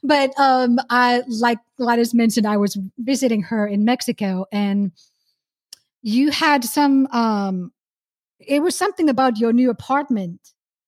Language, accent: English, American